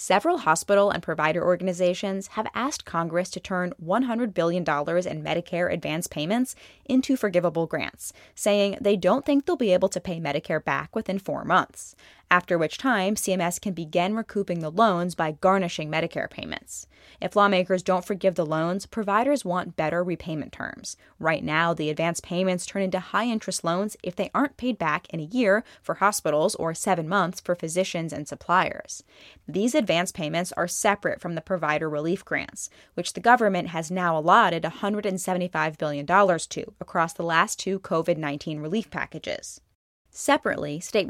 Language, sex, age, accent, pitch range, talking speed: English, female, 20-39, American, 165-200 Hz, 165 wpm